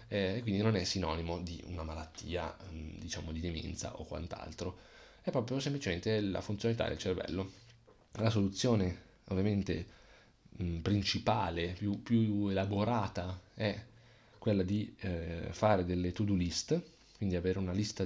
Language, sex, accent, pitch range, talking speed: Italian, male, native, 90-110 Hz, 135 wpm